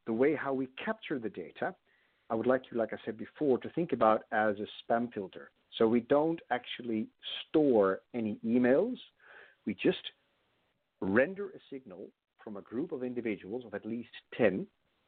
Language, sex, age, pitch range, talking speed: English, male, 50-69, 110-140 Hz, 170 wpm